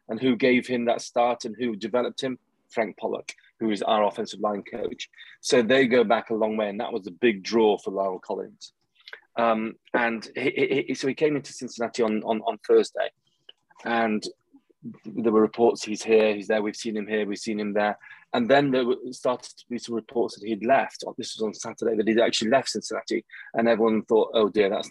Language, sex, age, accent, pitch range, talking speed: English, male, 20-39, British, 105-120 Hz, 210 wpm